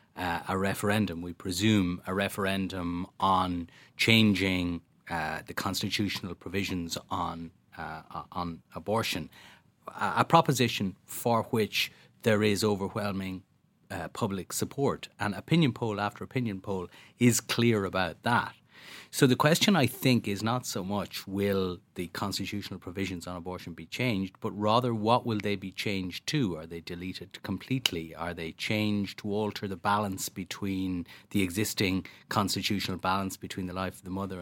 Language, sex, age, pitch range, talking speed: English, male, 30-49, 95-110 Hz, 150 wpm